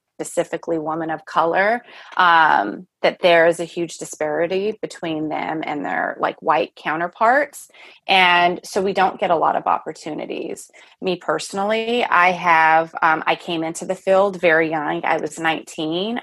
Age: 30-49